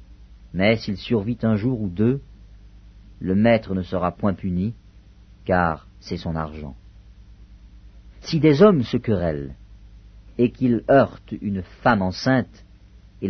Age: 50-69